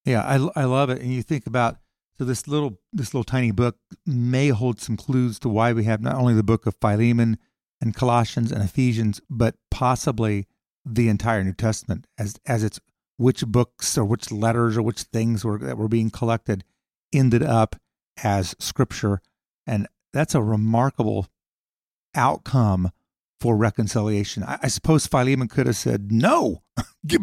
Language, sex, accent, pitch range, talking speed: English, male, American, 110-130 Hz, 165 wpm